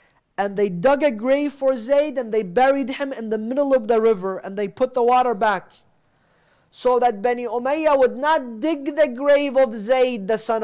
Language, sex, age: English, male, 30-49